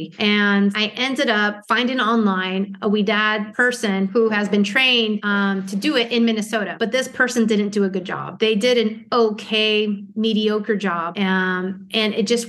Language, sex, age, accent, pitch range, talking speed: English, female, 30-49, American, 200-230 Hz, 185 wpm